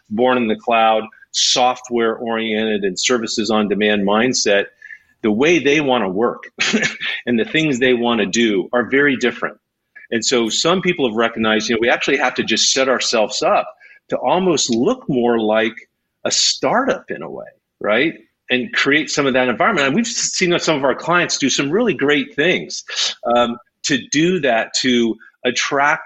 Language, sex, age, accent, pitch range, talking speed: English, male, 40-59, American, 110-145 Hz, 175 wpm